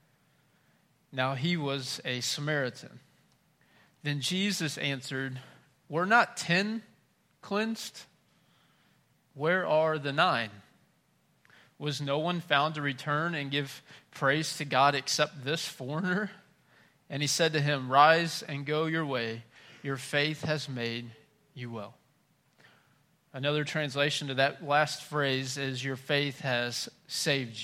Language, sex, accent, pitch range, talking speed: English, male, American, 135-160 Hz, 125 wpm